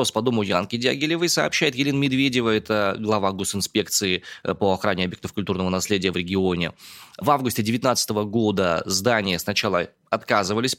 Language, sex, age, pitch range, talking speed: Russian, male, 20-39, 95-115 Hz, 135 wpm